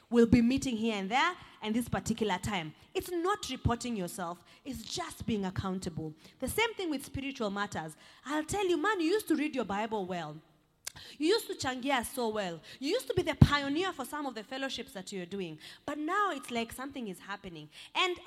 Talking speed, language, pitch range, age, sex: 205 wpm, English, 220-315 Hz, 20-39, female